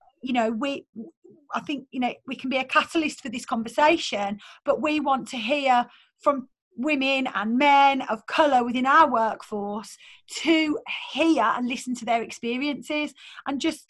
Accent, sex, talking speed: British, female, 165 wpm